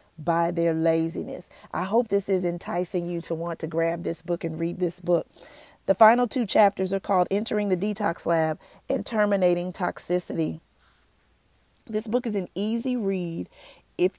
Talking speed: 165 wpm